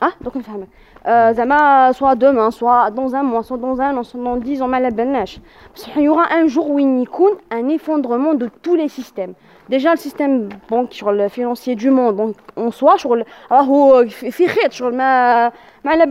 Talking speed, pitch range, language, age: 225 wpm, 230-290 Hz, Arabic, 20-39